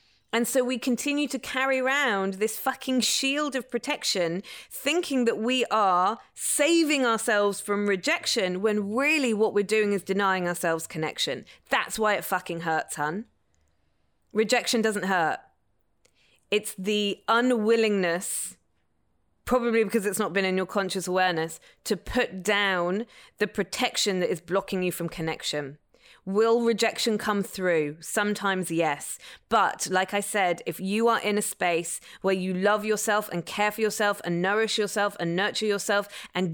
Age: 20-39